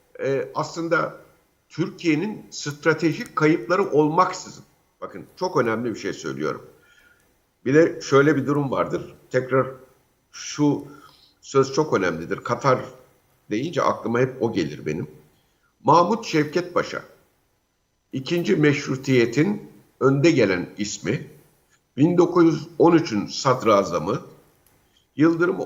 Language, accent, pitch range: Turkish, native, 130-160 Hz